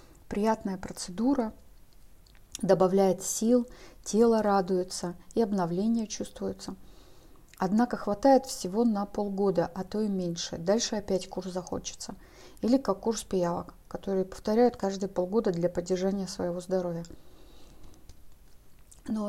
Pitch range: 180-215 Hz